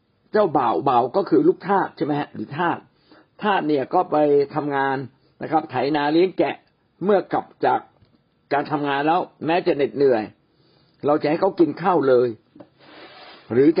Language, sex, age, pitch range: Thai, male, 60-79, 150-220 Hz